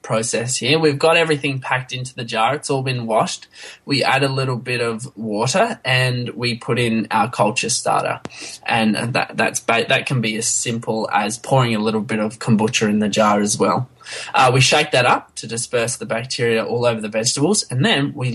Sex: male